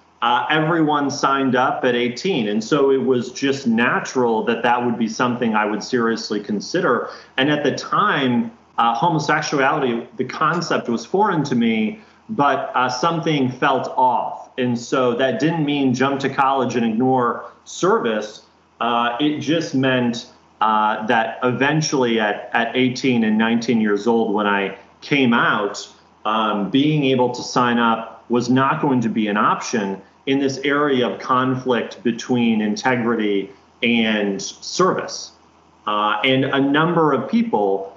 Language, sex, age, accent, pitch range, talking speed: English, male, 30-49, American, 110-140 Hz, 150 wpm